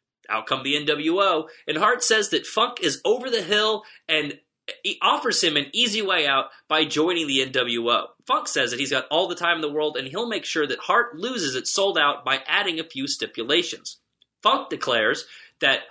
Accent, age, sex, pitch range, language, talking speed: American, 30-49, male, 150-235 Hz, English, 200 wpm